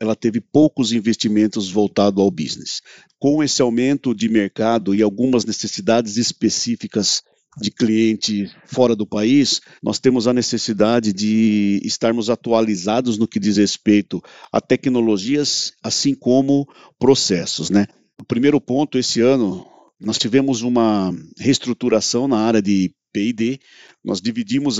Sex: male